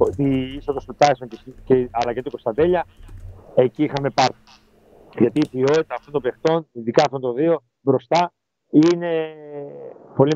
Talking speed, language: 125 wpm, Greek